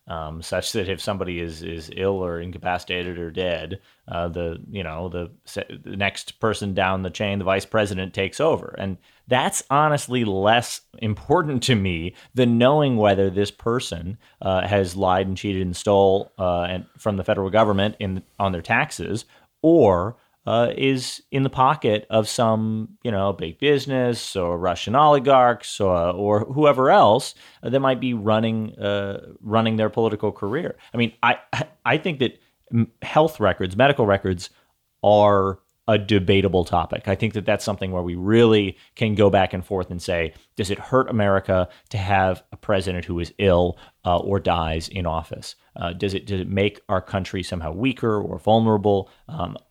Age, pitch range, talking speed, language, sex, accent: 30-49, 90-115 Hz, 175 wpm, English, male, American